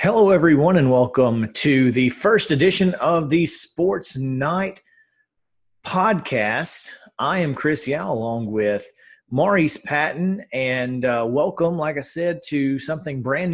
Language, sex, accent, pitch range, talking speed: English, male, American, 120-155 Hz, 135 wpm